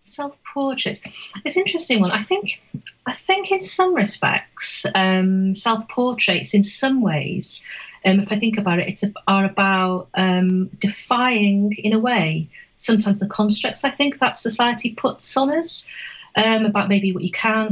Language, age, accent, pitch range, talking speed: English, 40-59, British, 185-220 Hz, 145 wpm